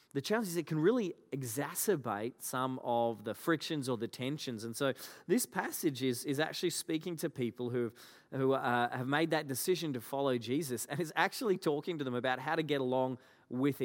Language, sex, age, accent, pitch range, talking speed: English, male, 30-49, Australian, 125-155 Hz, 200 wpm